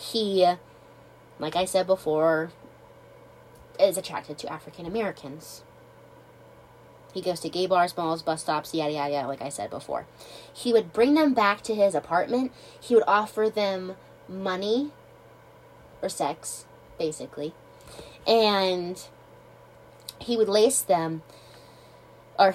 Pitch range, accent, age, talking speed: 175-220 Hz, American, 20-39, 125 wpm